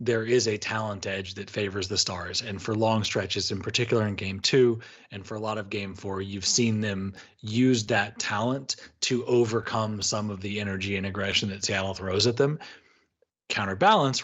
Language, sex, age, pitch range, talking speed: English, male, 30-49, 100-120 Hz, 190 wpm